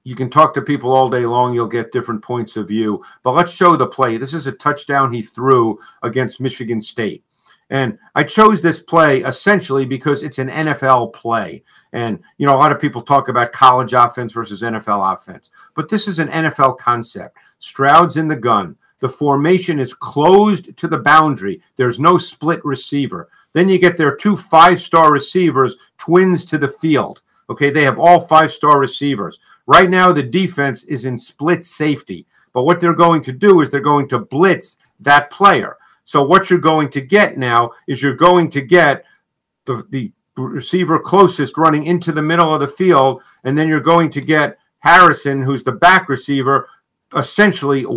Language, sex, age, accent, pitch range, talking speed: English, male, 50-69, American, 130-170 Hz, 185 wpm